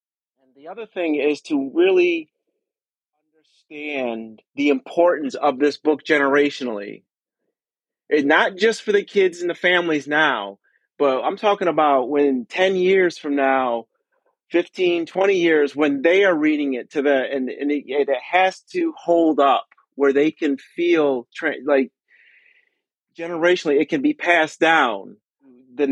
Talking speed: 145 wpm